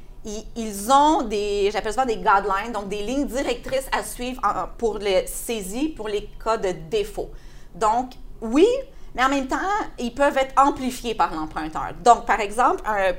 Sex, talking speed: female, 170 wpm